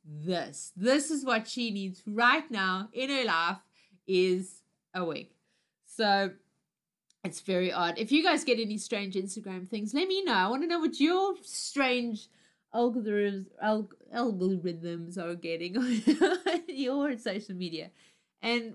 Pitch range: 175-235 Hz